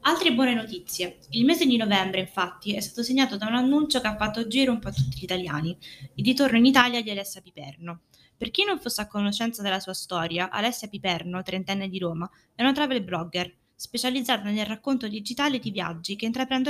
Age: 20-39